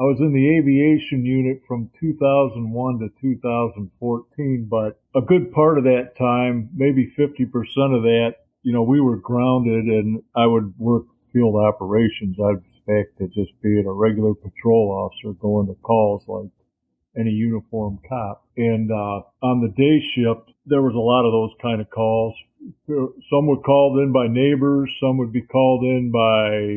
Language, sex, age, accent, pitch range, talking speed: English, male, 50-69, American, 115-145 Hz, 170 wpm